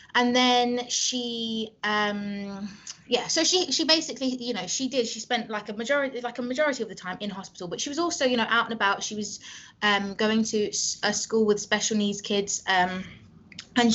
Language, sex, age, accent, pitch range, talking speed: English, female, 20-39, British, 190-230 Hz, 205 wpm